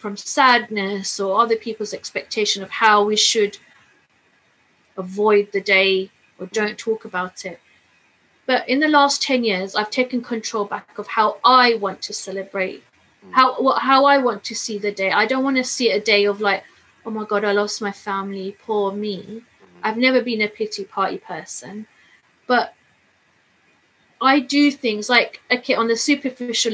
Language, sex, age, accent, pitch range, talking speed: English, female, 30-49, British, 205-250 Hz, 170 wpm